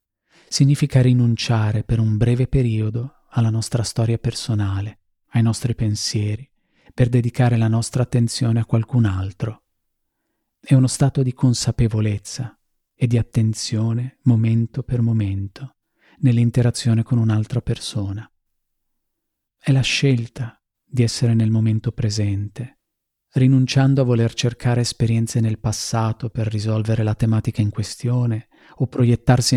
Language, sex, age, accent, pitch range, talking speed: Italian, male, 40-59, native, 110-125 Hz, 120 wpm